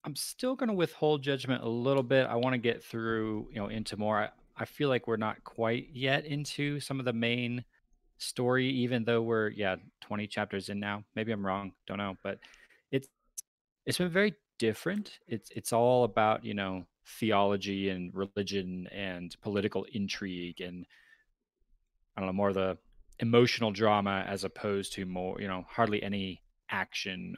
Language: English